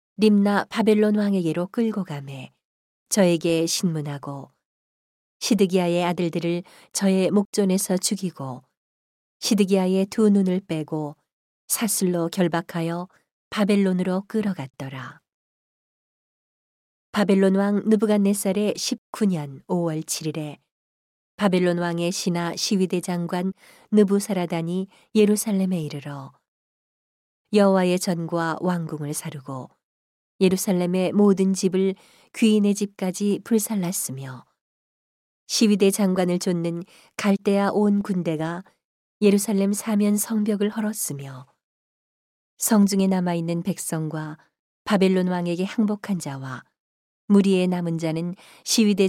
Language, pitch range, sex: Korean, 165-205 Hz, female